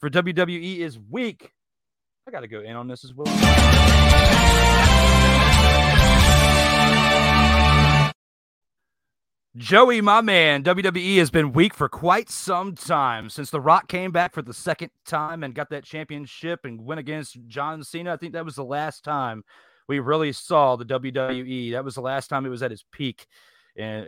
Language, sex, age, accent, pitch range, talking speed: English, male, 30-49, American, 120-160 Hz, 160 wpm